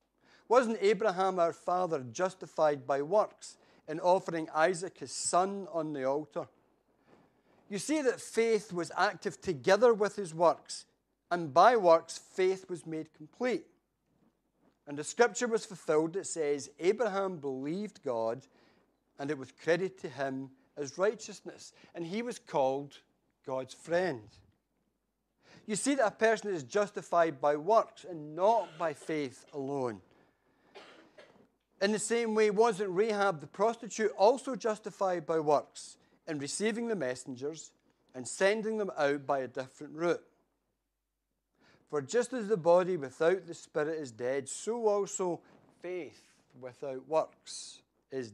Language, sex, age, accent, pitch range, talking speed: English, male, 60-79, British, 145-200 Hz, 135 wpm